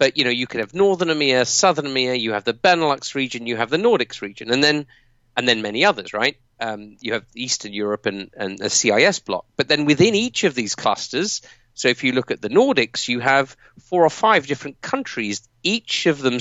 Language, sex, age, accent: English, male, 40-59, British